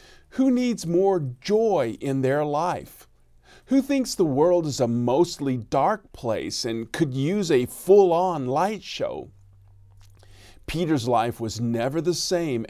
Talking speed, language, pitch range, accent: 135 wpm, English, 115-175 Hz, American